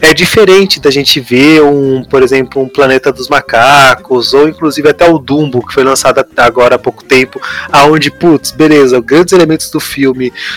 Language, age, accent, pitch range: Portuguese, 20-39, Brazilian, 125-155 Hz